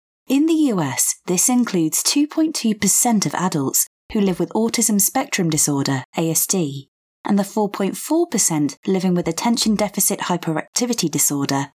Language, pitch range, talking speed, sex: English, 155-235 Hz, 120 wpm, female